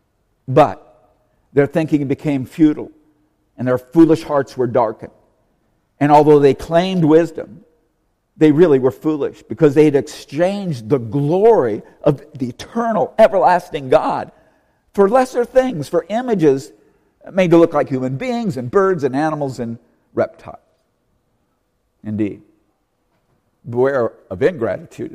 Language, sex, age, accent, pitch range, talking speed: English, male, 50-69, American, 115-165 Hz, 125 wpm